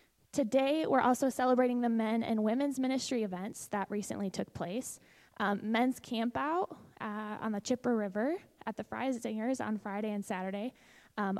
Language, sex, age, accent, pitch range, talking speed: English, female, 20-39, American, 215-260 Hz, 170 wpm